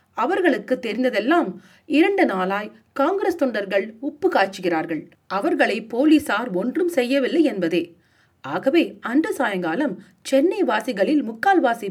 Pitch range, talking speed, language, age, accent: 190-315 Hz, 95 wpm, Tamil, 40-59, native